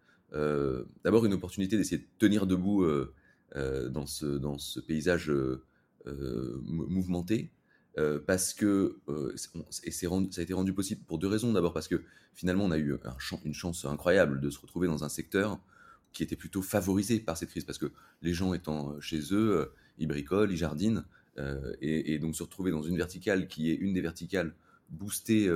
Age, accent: 30-49, French